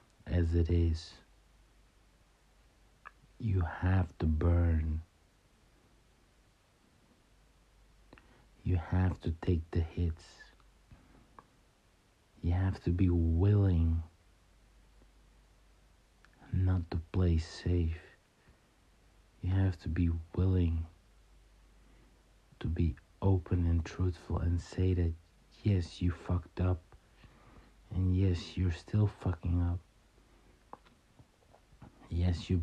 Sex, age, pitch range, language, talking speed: male, 60-79, 85-95 Hz, English, 85 wpm